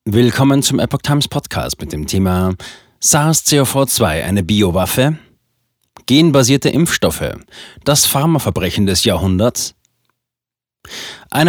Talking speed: 95 wpm